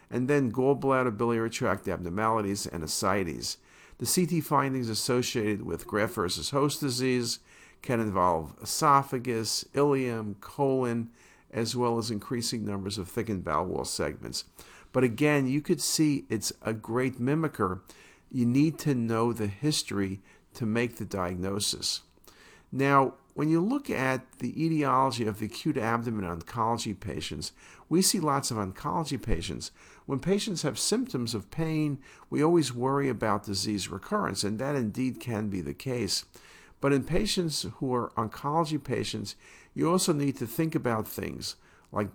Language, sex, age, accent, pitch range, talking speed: English, male, 50-69, American, 105-140 Hz, 145 wpm